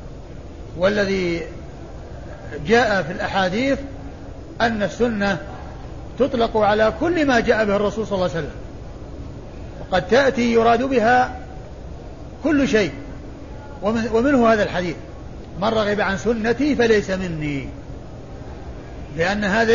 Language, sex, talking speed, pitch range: Arabic, male, 105 wpm, 190-235 Hz